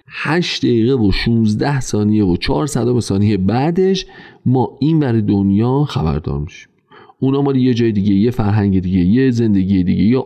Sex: male